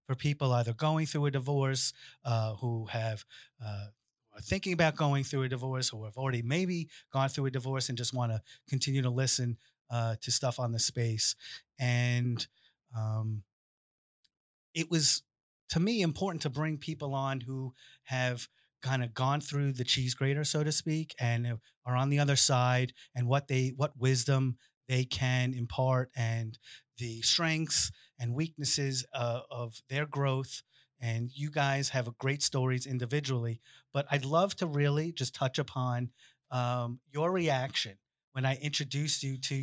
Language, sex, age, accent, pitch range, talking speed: English, male, 30-49, American, 125-145 Hz, 165 wpm